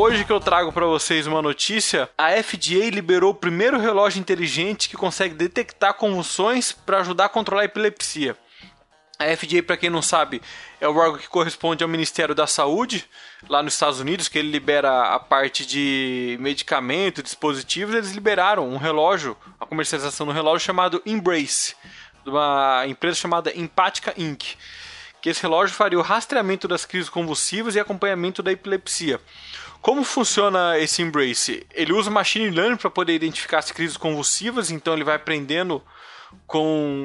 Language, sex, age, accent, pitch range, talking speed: Portuguese, male, 20-39, Brazilian, 150-200 Hz, 165 wpm